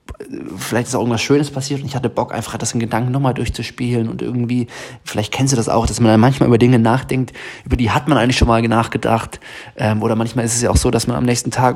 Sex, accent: male, German